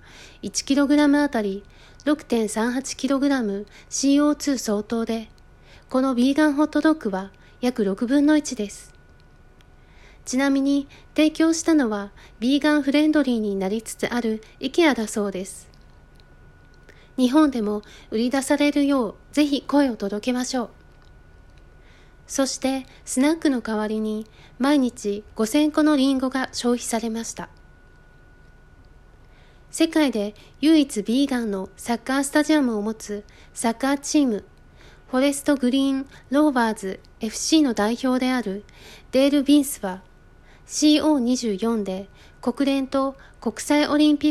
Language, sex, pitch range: Japanese, female, 220-290 Hz